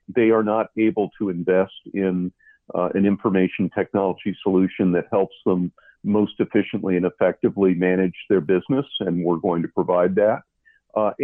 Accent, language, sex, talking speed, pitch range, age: American, English, male, 155 wpm, 90-110 Hz, 50-69